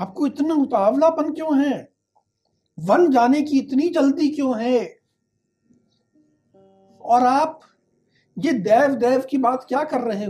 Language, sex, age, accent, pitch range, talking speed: Hindi, male, 60-79, native, 205-320 Hz, 130 wpm